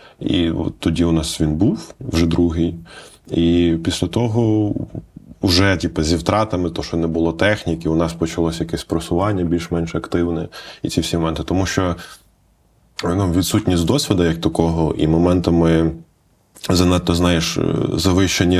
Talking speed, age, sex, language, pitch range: 140 wpm, 20-39, male, Ukrainian, 80-95 Hz